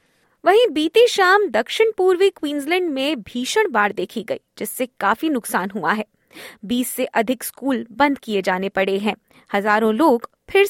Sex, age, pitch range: female, 20-39, 215-315 Hz